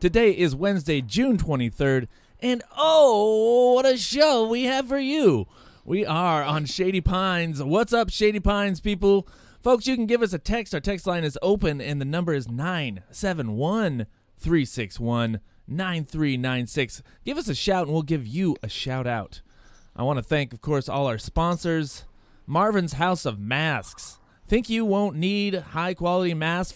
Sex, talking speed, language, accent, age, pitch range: male, 155 wpm, English, American, 30-49, 145-220 Hz